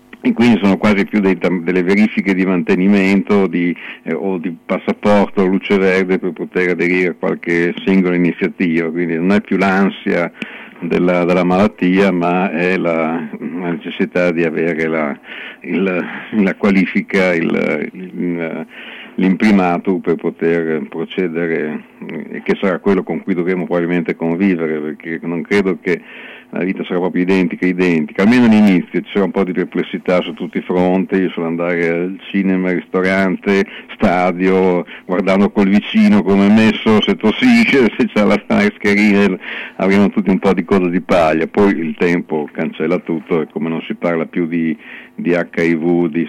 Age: 50-69